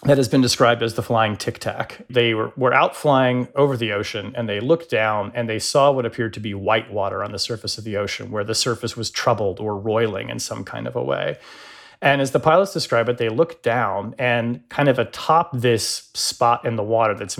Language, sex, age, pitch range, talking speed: English, male, 30-49, 105-125 Hz, 230 wpm